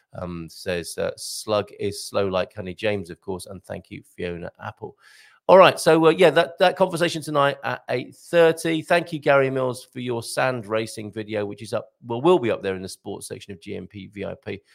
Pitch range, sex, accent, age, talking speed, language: 105-145 Hz, male, British, 50-69, 210 wpm, English